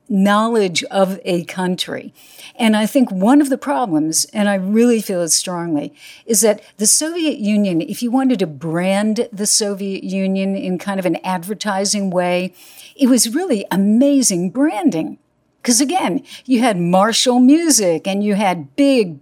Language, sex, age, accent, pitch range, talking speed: English, female, 60-79, American, 185-245 Hz, 160 wpm